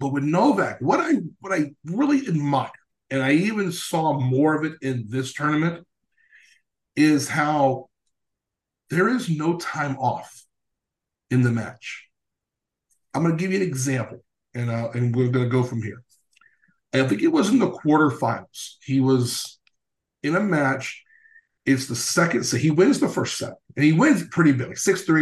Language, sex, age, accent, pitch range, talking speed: English, male, 50-69, American, 130-170 Hz, 175 wpm